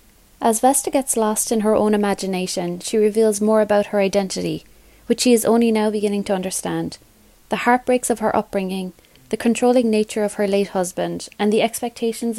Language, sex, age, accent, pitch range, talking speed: English, female, 30-49, Irish, 195-235 Hz, 180 wpm